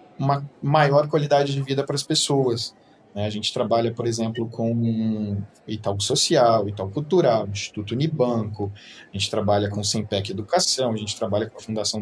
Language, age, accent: Portuguese, 20-39, Brazilian